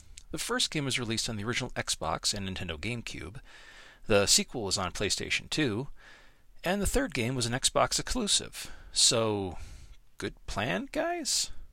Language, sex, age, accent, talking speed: English, male, 40-59, American, 155 wpm